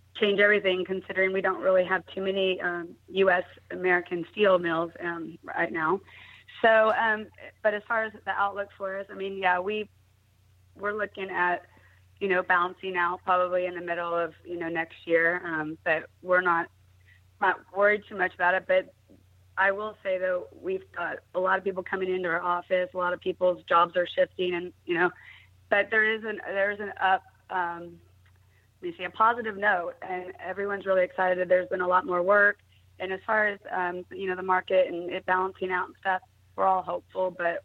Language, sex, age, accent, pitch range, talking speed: English, female, 30-49, American, 175-190 Hz, 200 wpm